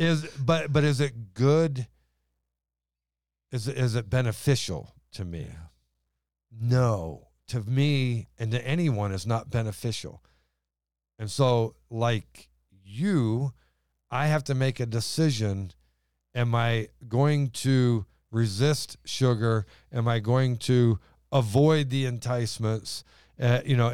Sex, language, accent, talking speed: male, English, American, 120 wpm